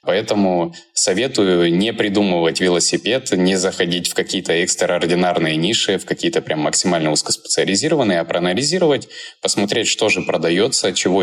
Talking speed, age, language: 125 wpm, 20-39, Russian